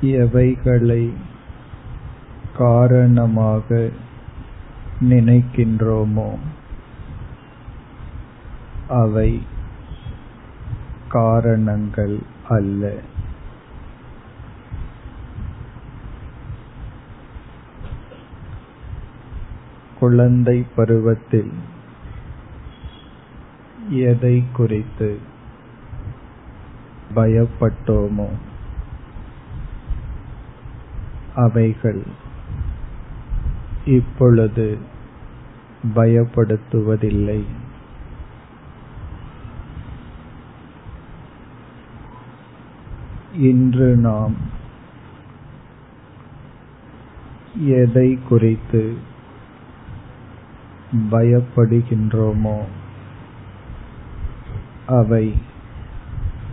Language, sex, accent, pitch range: Tamil, male, native, 105-120 Hz